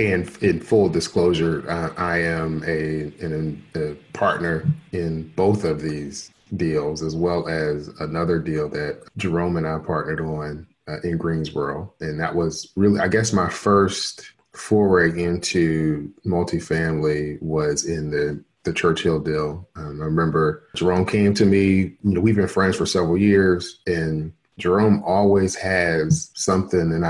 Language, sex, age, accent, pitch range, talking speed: English, male, 30-49, American, 80-100 Hz, 150 wpm